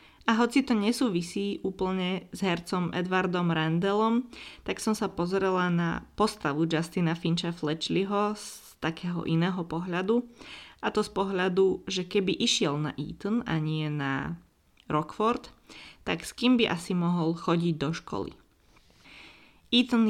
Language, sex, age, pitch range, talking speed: Slovak, female, 20-39, 165-205 Hz, 135 wpm